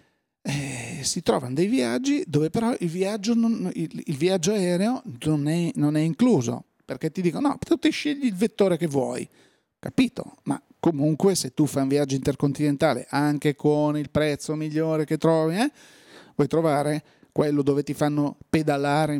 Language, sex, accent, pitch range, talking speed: Italian, male, native, 135-165 Hz, 155 wpm